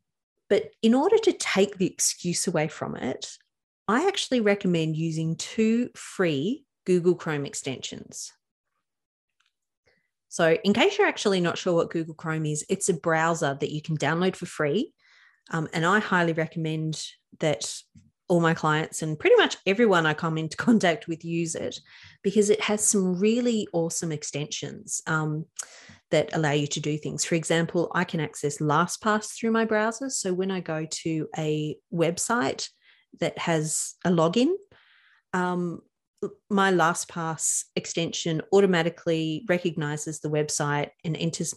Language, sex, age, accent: English, female, 30-49, Australian